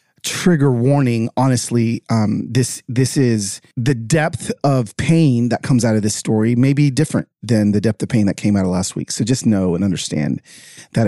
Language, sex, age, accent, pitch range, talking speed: English, male, 30-49, American, 120-155 Hz, 200 wpm